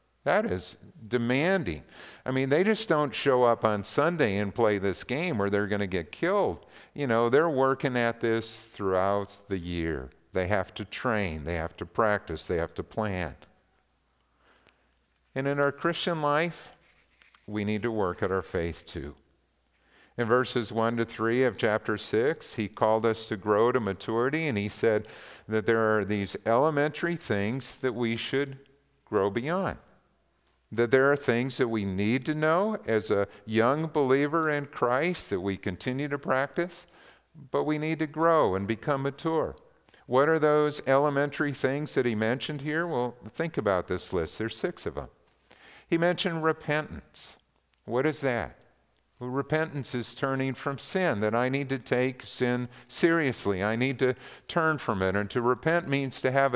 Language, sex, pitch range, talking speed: English, male, 100-145 Hz, 170 wpm